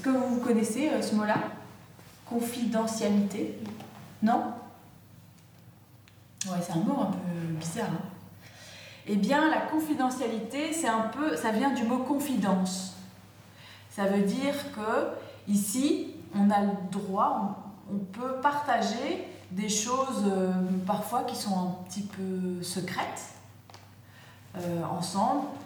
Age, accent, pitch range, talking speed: 20-39, French, 175-235 Hz, 110 wpm